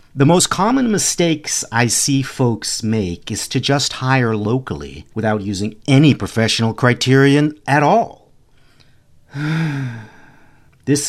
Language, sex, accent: English, male, American